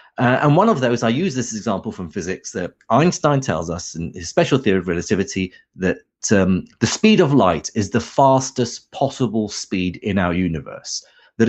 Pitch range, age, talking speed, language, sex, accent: 110-140 Hz, 30-49, 190 wpm, English, male, British